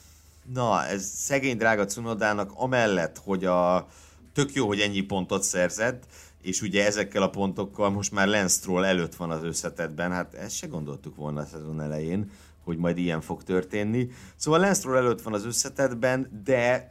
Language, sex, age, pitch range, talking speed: Hungarian, male, 60-79, 85-115 Hz, 165 wpm